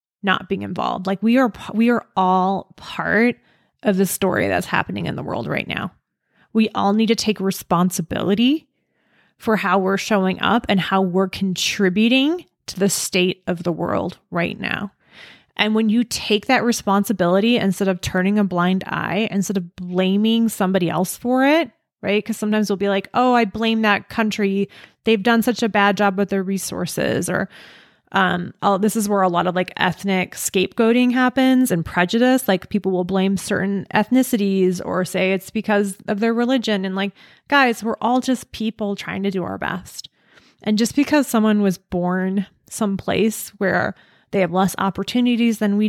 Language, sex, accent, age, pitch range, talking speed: English, female, American, 20-39, 190-225 Hz, 175 wpm